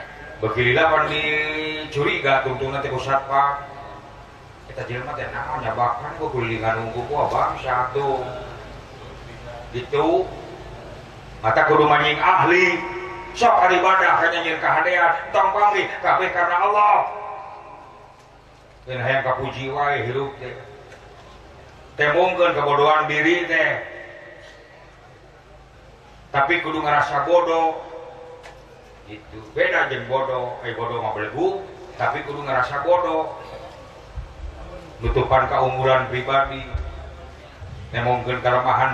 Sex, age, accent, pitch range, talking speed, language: male, 30-49, native, 125-165 Hz, 105 wpm, Indonesian